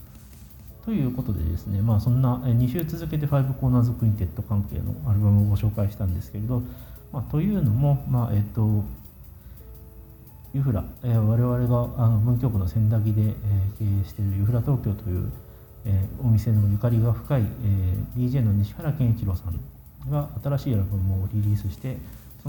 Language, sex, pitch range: Japanese, male, 100-125 Hz